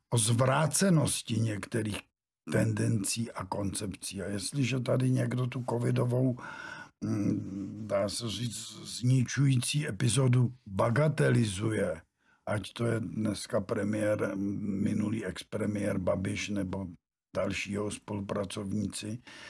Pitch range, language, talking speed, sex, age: 110-135 Hz, Czech, 90 wpm, male, 60-79